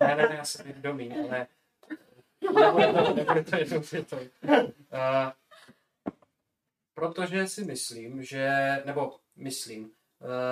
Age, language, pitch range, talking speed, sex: 20-39, Czech, 140-165 Hz, 130 wpm, male